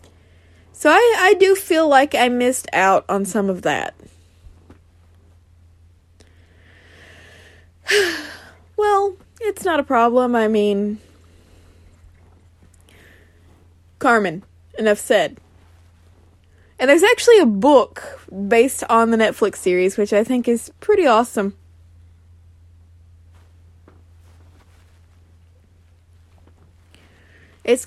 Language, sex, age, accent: English, female, 20-39, American